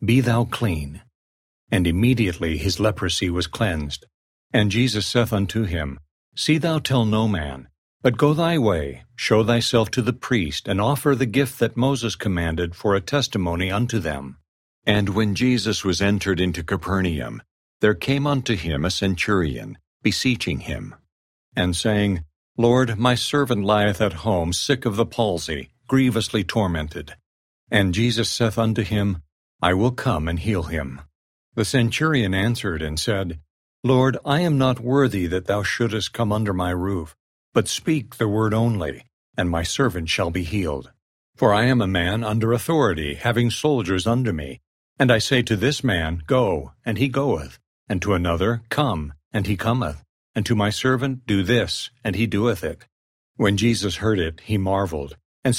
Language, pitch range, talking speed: English, 85-120 Hz, 165 wpm